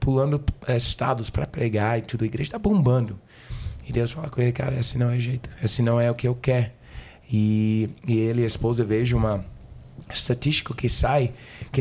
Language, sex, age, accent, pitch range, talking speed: Portuguese, male, 20-39, Brazilian, 115-135 Hz, 195 wpm